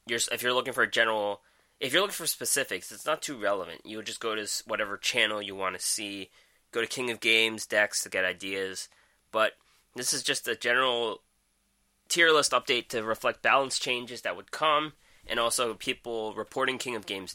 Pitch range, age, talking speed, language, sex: 105-125 Hz, 20-39, 200 wpm, English, male